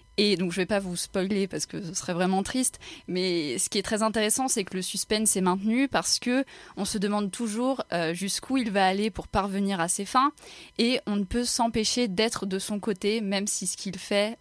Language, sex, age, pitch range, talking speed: French, female, 20-39, 185-215 Hz, 225 wpm